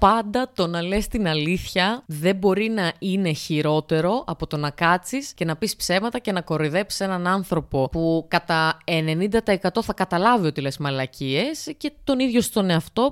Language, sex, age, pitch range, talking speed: Greek, female, 20-39, 160-230 Hz, 170 wpm